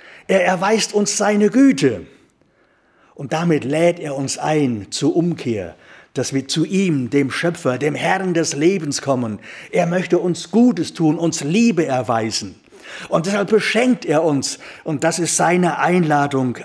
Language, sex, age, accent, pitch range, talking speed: German, male, 60-79, German, 140-195 Hz, 150 wpm